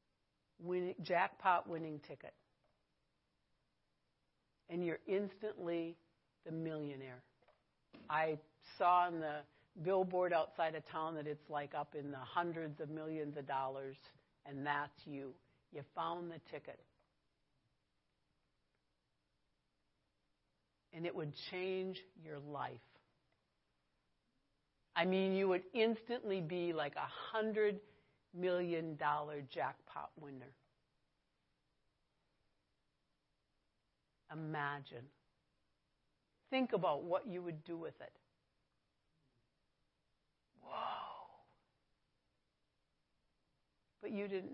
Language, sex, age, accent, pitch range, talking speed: English, female, 60-79, American, 145-185 Hz, 90 wpm